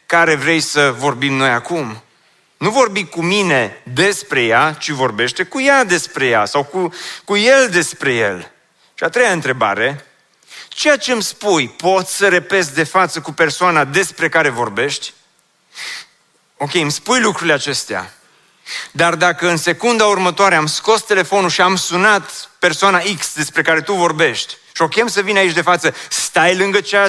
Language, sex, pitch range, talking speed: Romanian, male, 150-200 Hz, 160 wpm